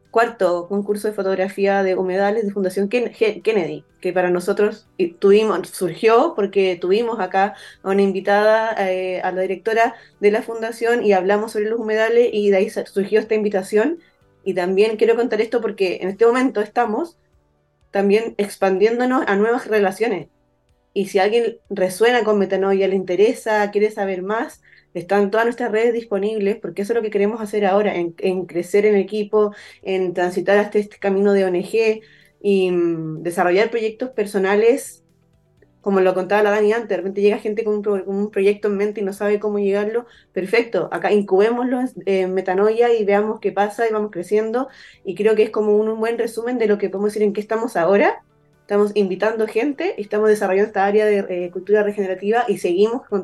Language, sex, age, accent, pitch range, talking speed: Spanish, female, 20-39, Argentinian, 195-225 Hz, 185 wpm